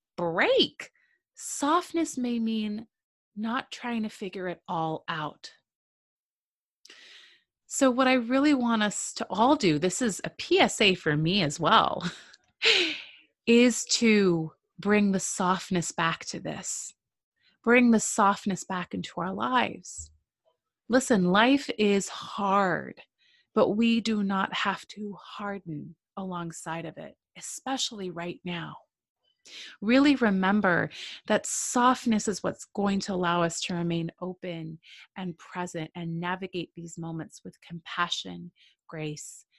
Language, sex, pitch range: English, female, 170-245 Hz